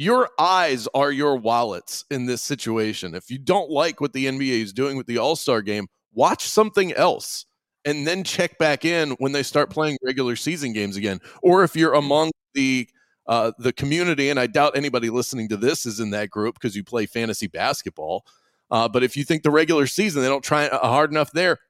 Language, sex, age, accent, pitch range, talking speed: English, male, 30-49, American, 125-170 Hz, 205 wpm